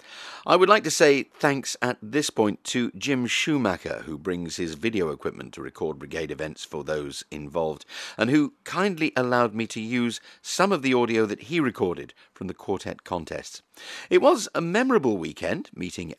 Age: 50-69